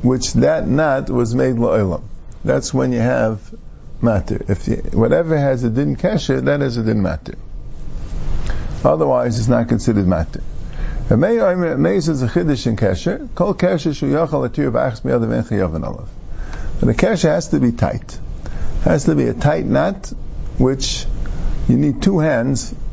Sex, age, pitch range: male, 50-69, 90-140 Hz